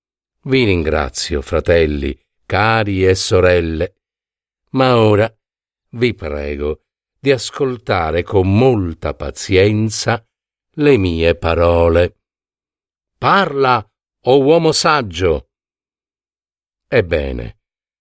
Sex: male